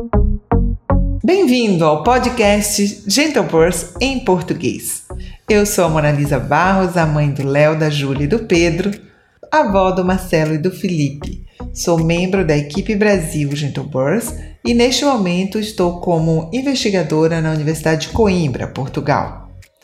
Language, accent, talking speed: Portuguese, Brazilian, 140 wpm